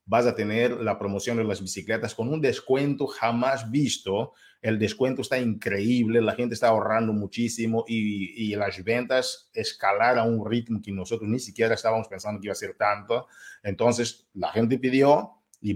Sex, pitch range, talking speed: male, 105-130 Hz, 175 wpm